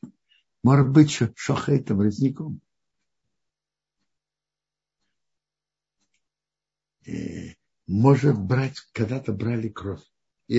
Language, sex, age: Russian, male, 60-79